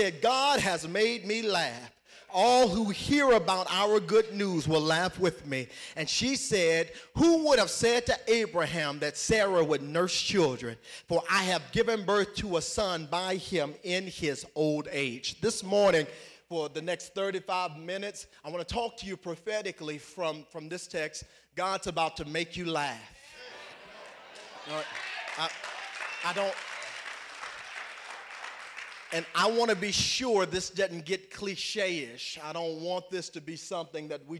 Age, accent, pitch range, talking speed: 30-49, American, 150-195 Hz, 155 wpm